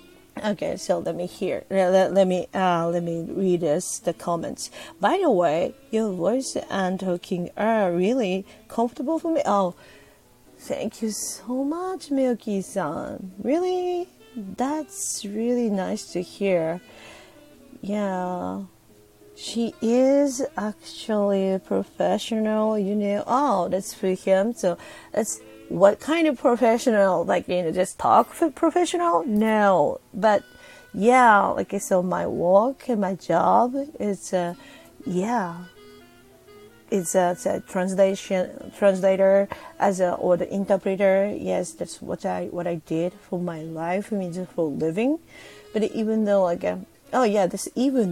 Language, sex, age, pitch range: Japanese, female, 30-49, 185-250 Hz